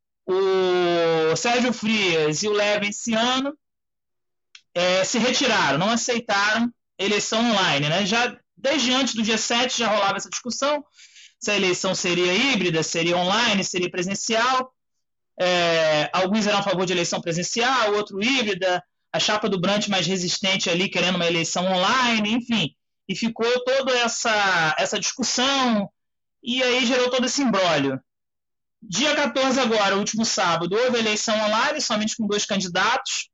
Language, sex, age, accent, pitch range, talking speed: Portuguese, male, 20-39, Brazilian, 190-250 Hz, 150 wpm